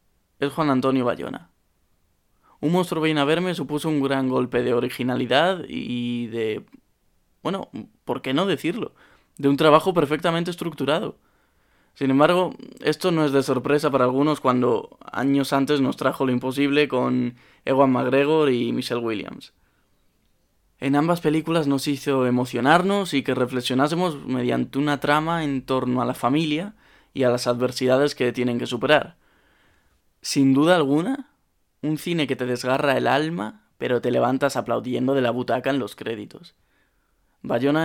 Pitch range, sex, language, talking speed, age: 125-150 Hz, male, Spanish, 150 wpm, 20-39